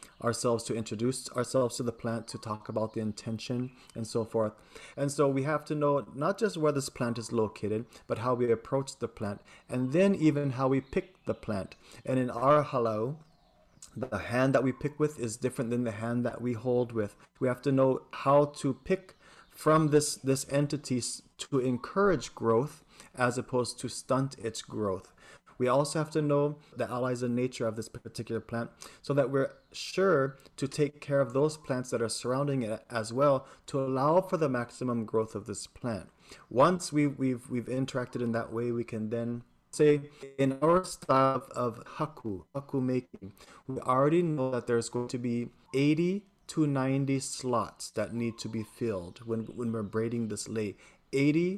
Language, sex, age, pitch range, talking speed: English, male, 30-49, 115-140 Hz, 190 wpm